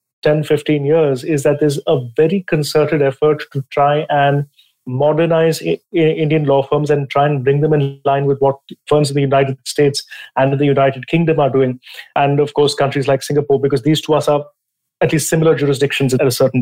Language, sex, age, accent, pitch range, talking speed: English, male, 30-49, Indian, 140-155 Hz, 200 wpm